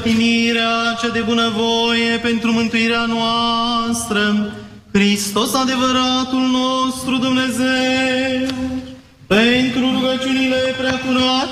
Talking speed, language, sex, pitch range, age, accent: 80 wpm, Romanian, male, 215-240 Hz, 20-39, native